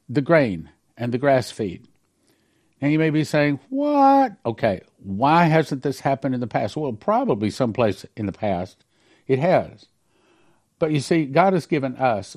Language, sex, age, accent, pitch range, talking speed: English, male, 50-69, American, 110-150 Hz, 170 wpm